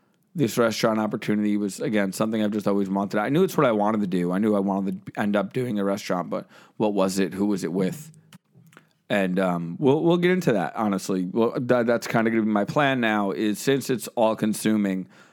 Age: 30-49